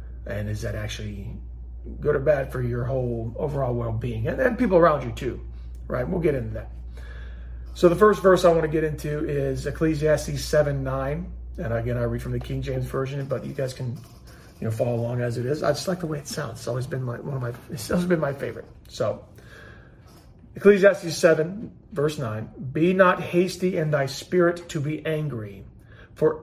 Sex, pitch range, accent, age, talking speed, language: male, 115-145 Hz, American, 40-59, 205 wpm, English